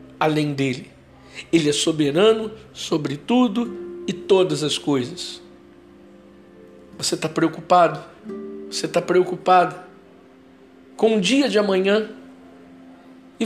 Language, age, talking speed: Portuguese, 60-79, 105 wpm